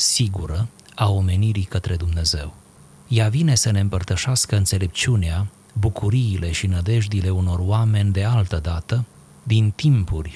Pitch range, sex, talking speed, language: 95-120 Hz, male, 120 wpm, Romanian